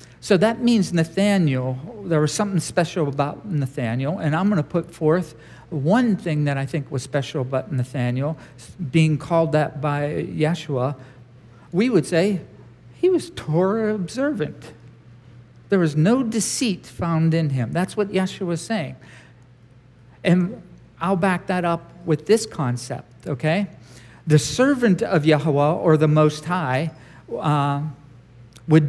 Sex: male